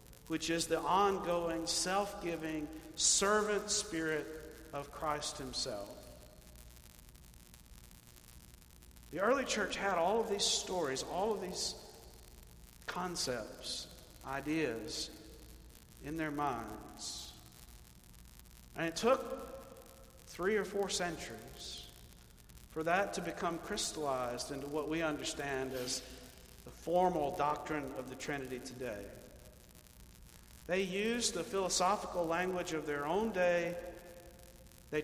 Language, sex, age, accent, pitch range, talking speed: English, male, 50-69, American, 130-175 Hz, 105 wpm